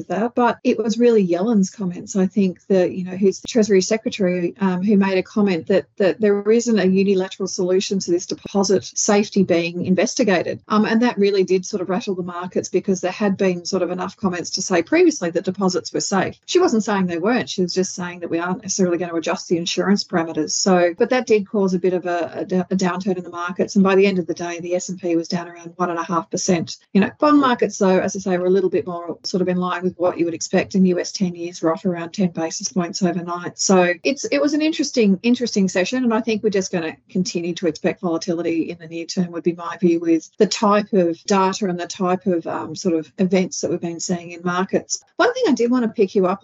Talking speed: 255 wpm